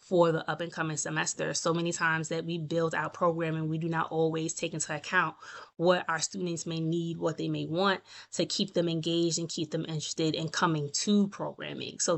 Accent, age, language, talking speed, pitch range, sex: American, 20-39, English, 210 wpm, 155-180 Hz, female